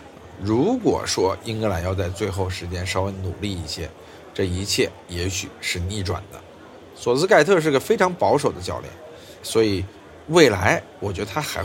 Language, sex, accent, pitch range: Chinese, male, native, 95-115 Hz